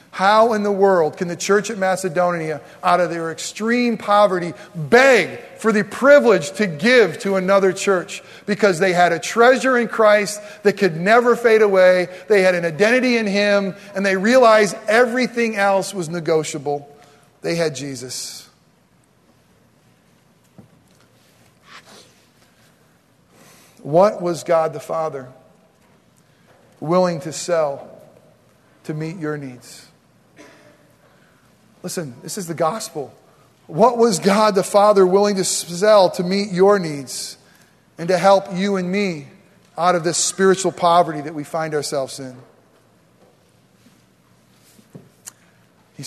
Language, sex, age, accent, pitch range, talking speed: English, male, 40-59, American, 165-205 Hz, 125 wpm